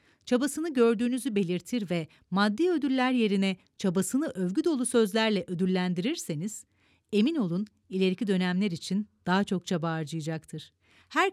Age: 40-59